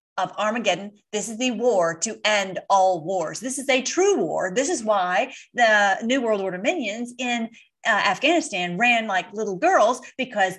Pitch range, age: 190-245 Hz, 40-59